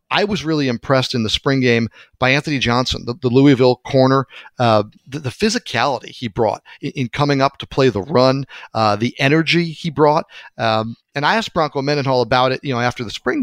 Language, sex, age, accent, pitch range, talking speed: English, male, 40-59, American, 125-150 Hz, 210 wpm